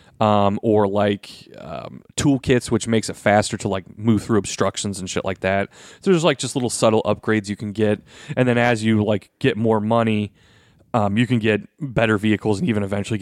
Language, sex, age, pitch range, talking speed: English, male, 30-49, 105-130 Hz, 205 wpm